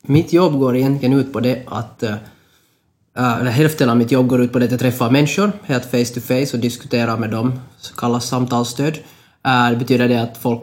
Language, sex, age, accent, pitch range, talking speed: Finnish, male, 20-39, native, 115-135 Hz, 210 wpm